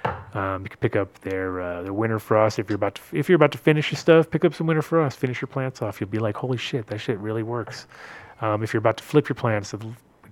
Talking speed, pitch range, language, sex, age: 280 wpm, 105-120 Hz, English, male, 30-49